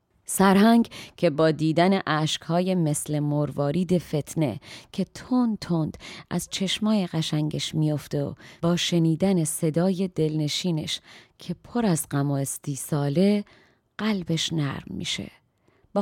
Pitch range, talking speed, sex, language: 150-195 Hz, 115 wpm, female, Persian